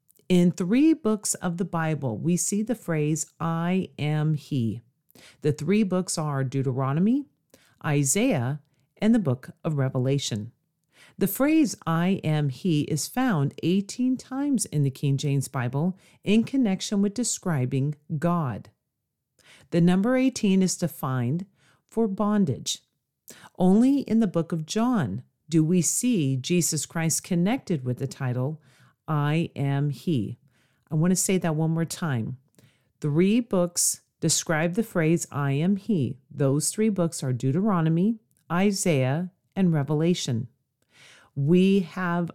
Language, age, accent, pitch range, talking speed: English, 40-59, American, 140-195 Hz, 135 wpm